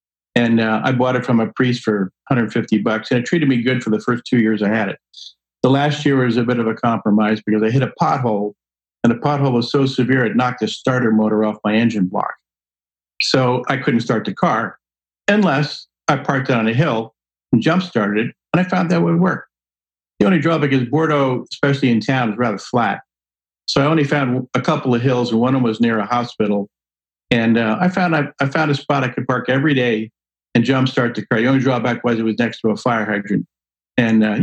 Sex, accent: male, American